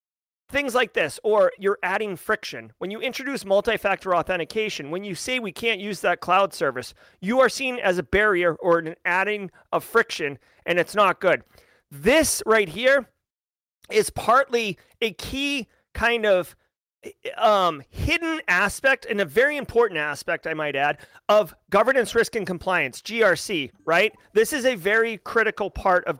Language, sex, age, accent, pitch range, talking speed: English, male, 30-49, American, 195-260 Hz, 160 wpm